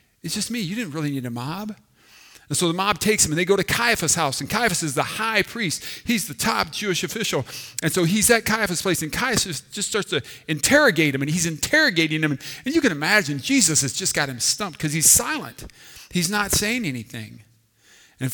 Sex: male